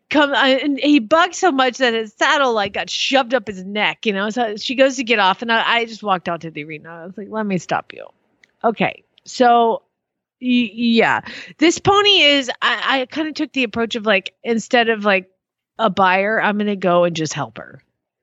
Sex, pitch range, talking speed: female, 190-250 Hz, 215 wpm